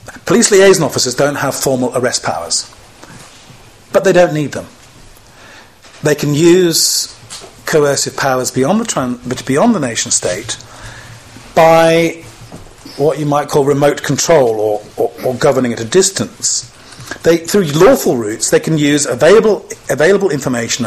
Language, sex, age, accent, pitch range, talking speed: English, male, 40-59, British, 120-160 Hz, 140 wpm